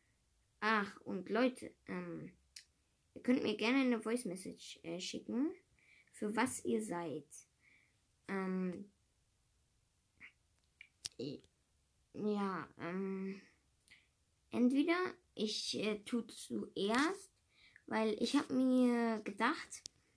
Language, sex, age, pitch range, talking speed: English, female, 20-39, 200-260 Hz, 85 wpm